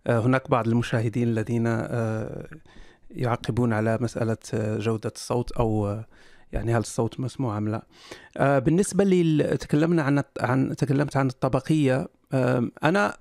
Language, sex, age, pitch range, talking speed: Arabic, male, 40-59, 125-165 Hz, 115 wpm